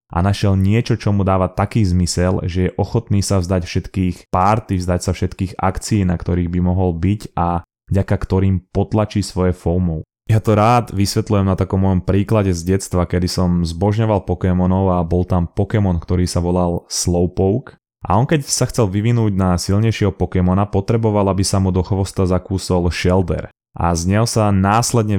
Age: 20-39